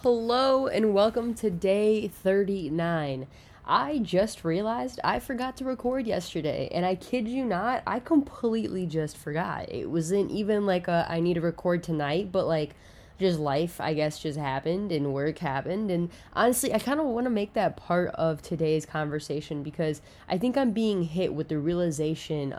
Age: 10-29